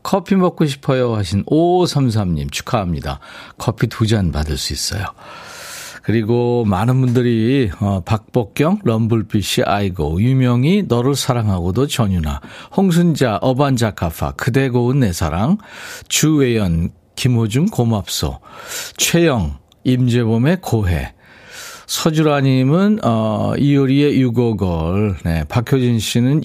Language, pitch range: Korean, 100-150 Hz